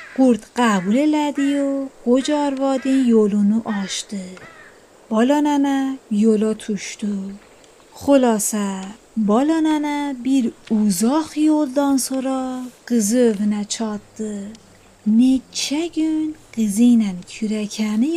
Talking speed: 75 wpm